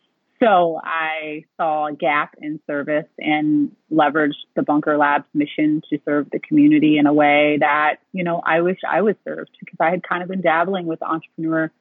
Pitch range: 155-200 Hz